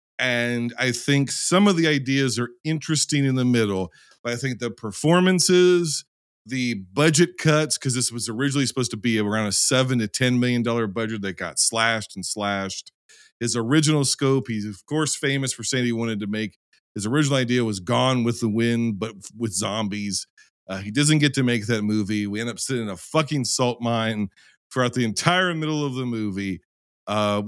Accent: American